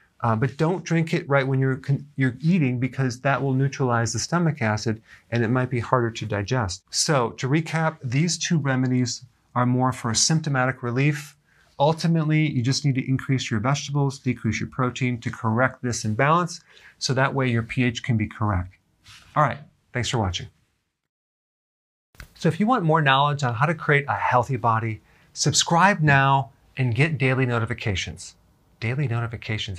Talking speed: 170 wpm